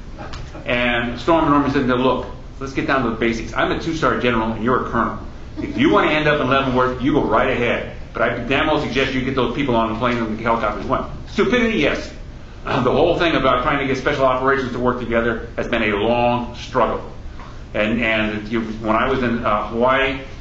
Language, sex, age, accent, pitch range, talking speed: English, male, 50-69, American, 115-135 Hz, 220 wpm